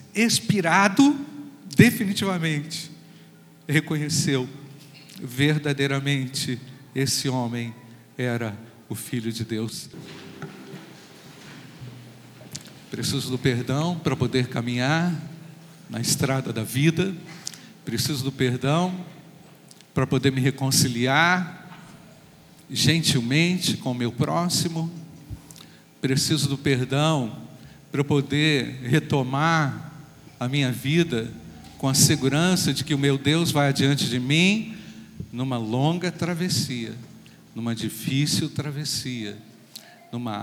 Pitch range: 130-165 Hz